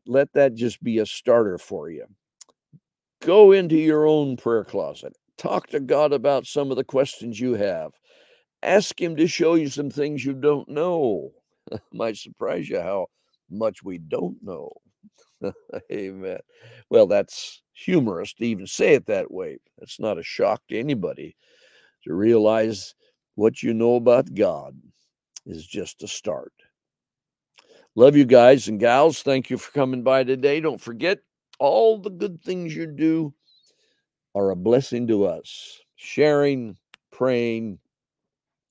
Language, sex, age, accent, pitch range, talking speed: English, male, 60-79, American, 115-185 Hz, 145 wpm